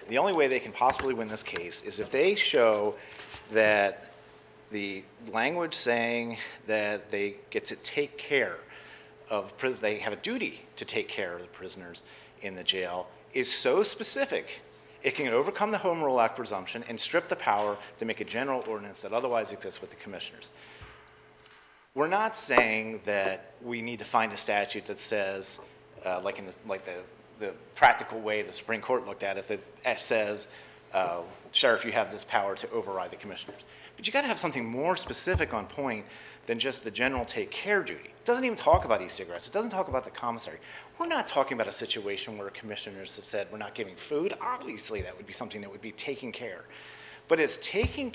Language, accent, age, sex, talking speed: English, American, 40-59, male, 200 wpm